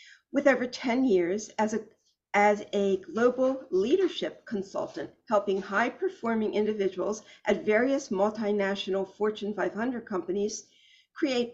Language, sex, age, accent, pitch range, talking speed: English, female, 50-69, American, 200-240 Hz, 115 wpm